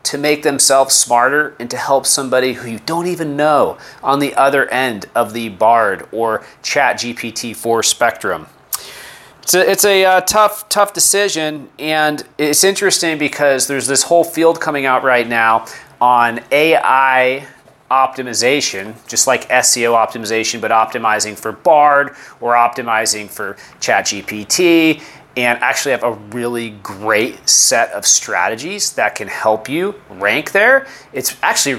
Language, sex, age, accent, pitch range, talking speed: English, male, 30-49, American, 115-155 Hz, 145 wpm